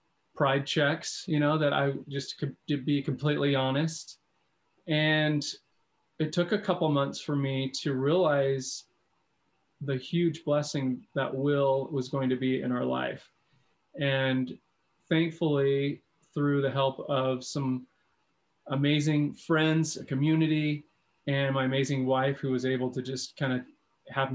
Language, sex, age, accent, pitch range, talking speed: English, male, 30-49, American, 135-155 Hz, 140 wpm